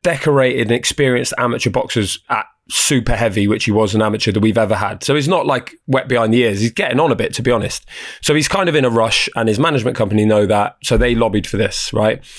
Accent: British